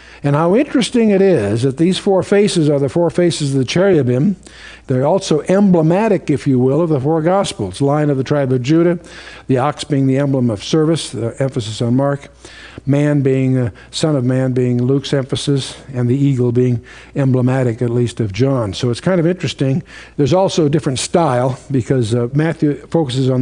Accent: American